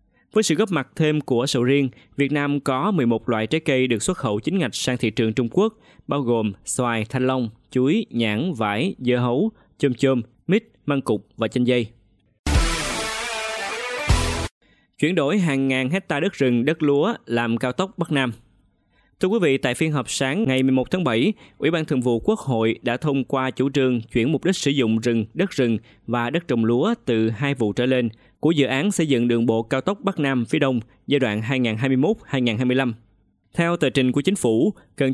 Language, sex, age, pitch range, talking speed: Vietnamese, male, 20-39, 115-145 Hz, 205 wpm